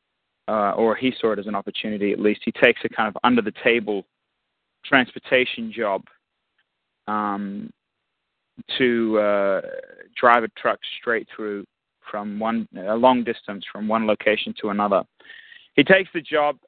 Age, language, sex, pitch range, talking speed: 30-49, English, male, 115-135 Hz, 145 wpm